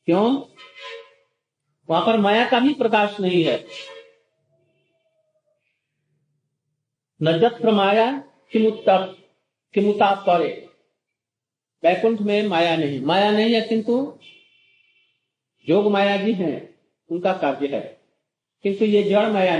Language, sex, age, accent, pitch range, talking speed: Hindi, male, 50-69, native, 150-215 Hz, 95 wpm